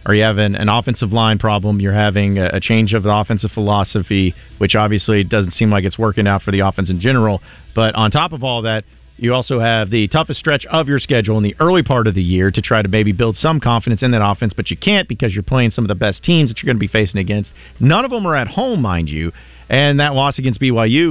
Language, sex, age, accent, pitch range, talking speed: English, male, 40-59, American, 100-125 Hz, 260 wpm